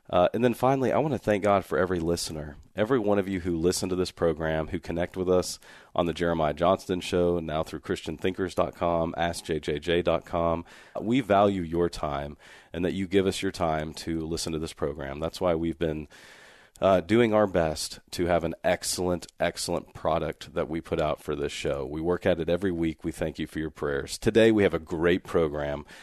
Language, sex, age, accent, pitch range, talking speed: English, male, 40-59, American, 80-95 Hz, 205 wpm